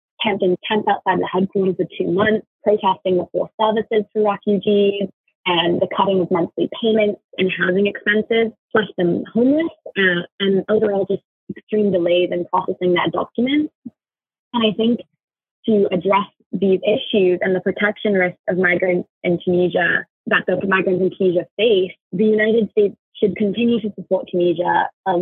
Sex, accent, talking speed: female, American, 160 wpm